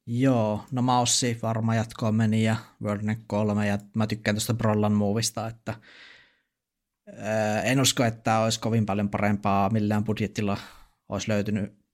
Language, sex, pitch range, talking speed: Finnish, male, 100-110 Hz, 145 wpm